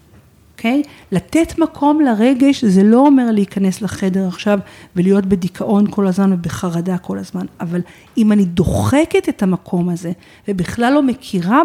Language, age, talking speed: Hebrew, 40-59, 140 wpm